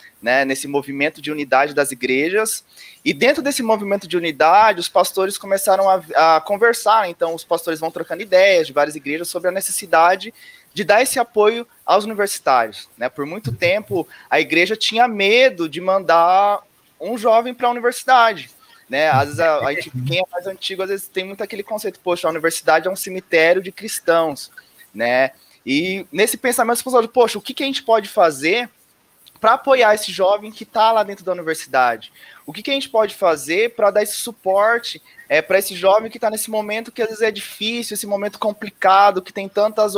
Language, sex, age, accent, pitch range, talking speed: Portuguese, male, 20-39, Brazilian, 175-225 Hz, 195 wpm